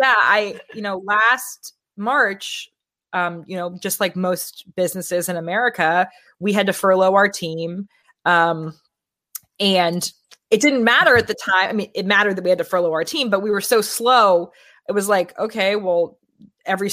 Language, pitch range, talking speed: English, 185-235 Hz, 180 wpm